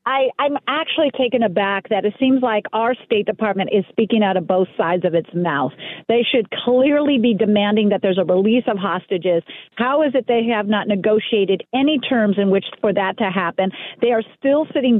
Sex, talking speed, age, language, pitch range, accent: female, 200 wpm, 40-59, English, 220-285 Hz, American